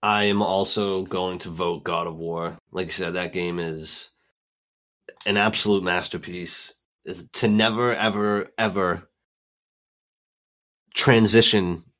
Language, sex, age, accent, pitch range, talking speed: English, male, 30-49, American, 90-105 Hz, 120 wpm